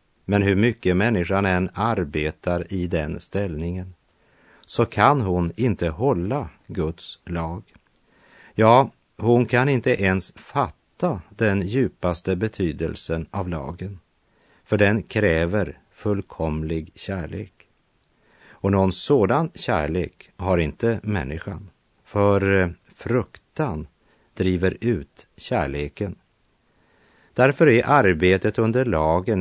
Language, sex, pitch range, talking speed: French, male, 85-105 Hz, 100 wpm